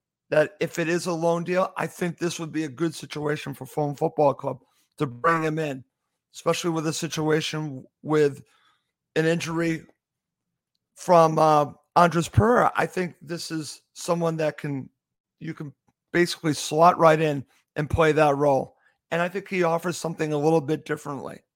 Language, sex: English, male